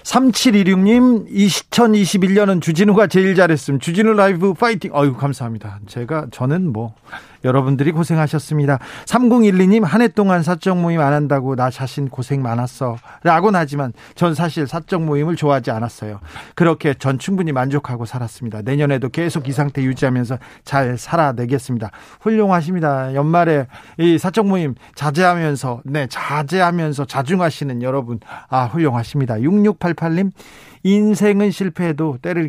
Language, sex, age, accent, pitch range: Korean, male, 40-59, native, 130-185 Hz